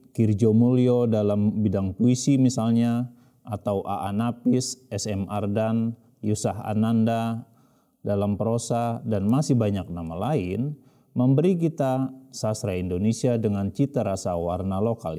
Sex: male